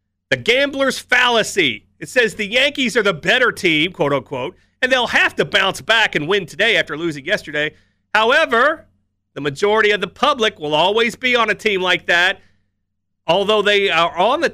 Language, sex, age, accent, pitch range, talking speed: English, male, 40-59, American, 160-245 Hz, 180 wpm